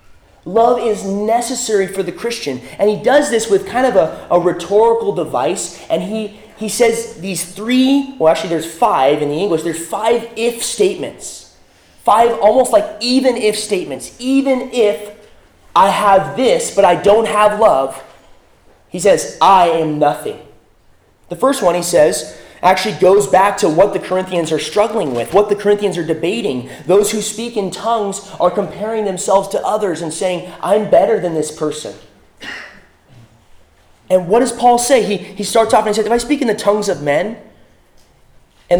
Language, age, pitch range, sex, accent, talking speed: English, 20-39, 180-235 Hz, male, American, 175 wpm